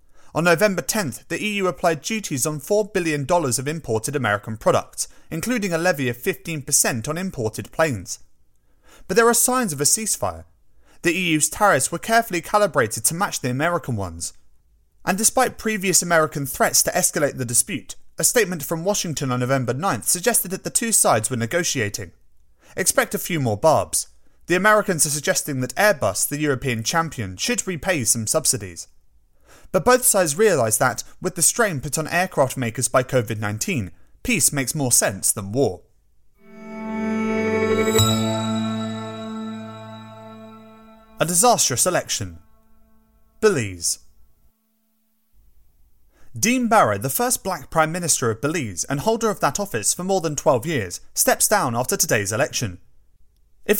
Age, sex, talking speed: 30-49, male, 145 wpm